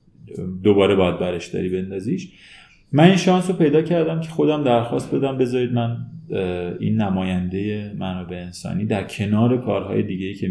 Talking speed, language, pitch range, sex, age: 150 wpm, Persian, 95-120 Hz, male, 30-49